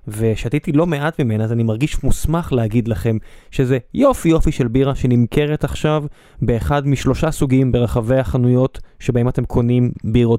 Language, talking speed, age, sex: Hebrew, 150 wpm, 20-39, male